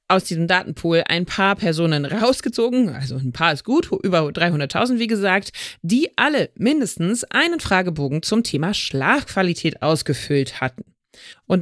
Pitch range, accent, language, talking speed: 165-230 Hz, German, German, 140 wpm